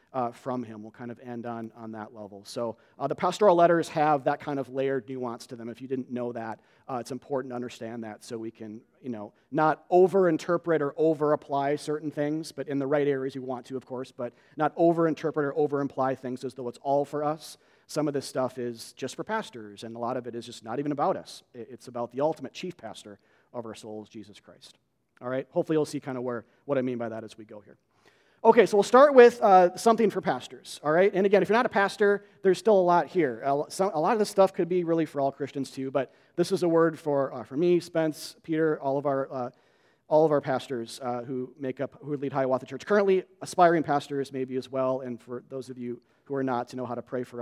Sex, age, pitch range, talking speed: male, 40-59, 120-170 Hz, 255 wpm